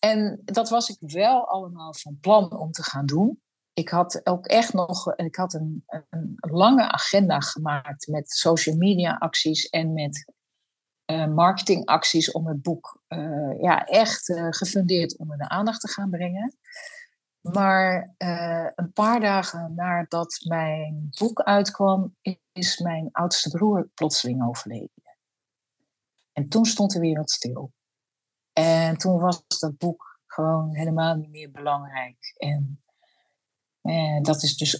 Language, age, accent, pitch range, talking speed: Dutch, 50-69, Dutch, 155-195 Hz, 145 wpm